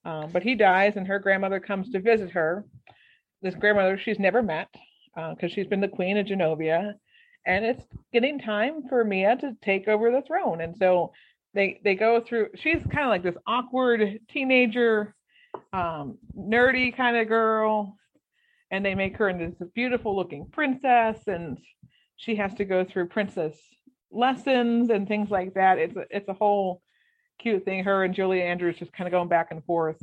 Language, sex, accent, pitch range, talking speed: English, female, American, 175-225 Hz, 185 wpm